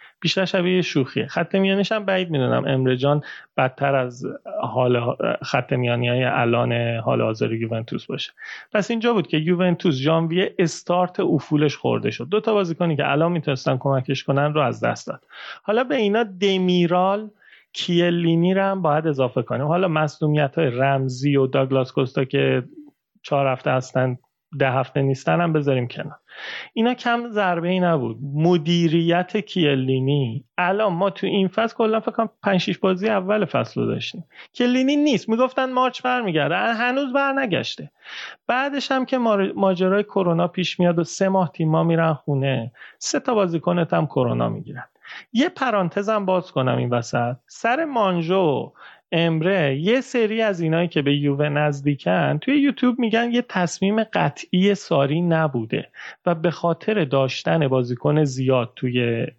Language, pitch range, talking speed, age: Persian, 140-210 Hz, 145 wpm, 30-49